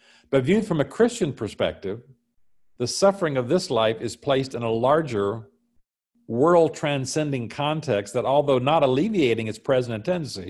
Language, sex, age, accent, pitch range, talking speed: English, male, 50-69, American, 110-155 Hz, 145 wpm